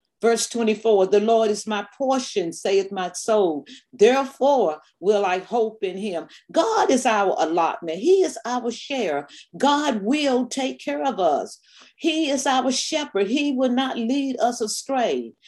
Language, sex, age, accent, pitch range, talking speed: English, female, 40-59, American, 200-255 Hz, 155 wpm